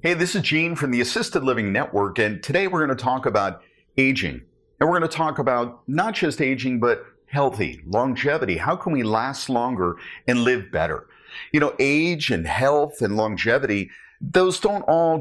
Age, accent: 50-69, American